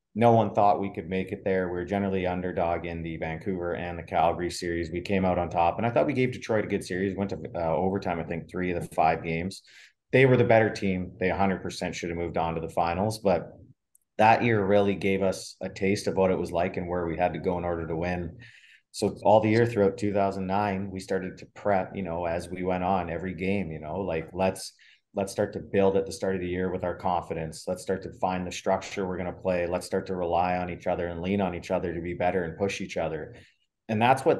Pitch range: 85-100 Hz